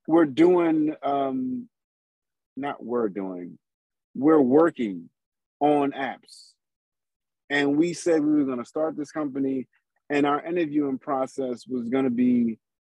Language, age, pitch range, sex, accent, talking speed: English, 30-49, 135-175 Hz, male, American, 130 wpm